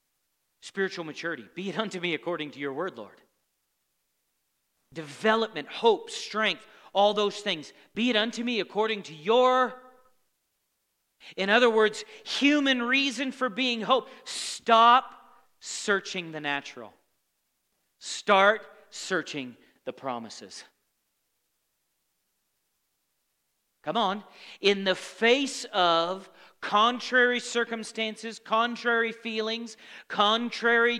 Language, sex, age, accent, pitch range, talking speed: English, male, 40-59, American, 175-235 Hz, 100 wpm